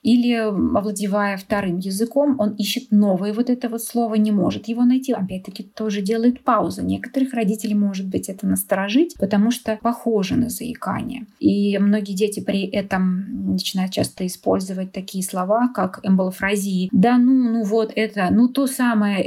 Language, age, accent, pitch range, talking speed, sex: Russian, 20-39, native, 195-235 Hz, 155 wpm, female